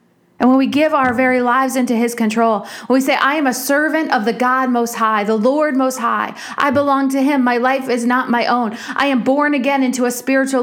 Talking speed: 245 wpm